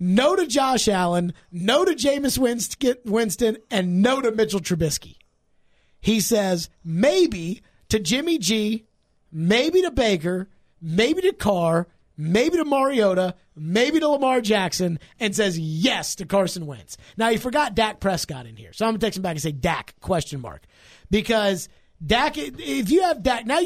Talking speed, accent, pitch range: 160 wpm, American, 160-230 Hz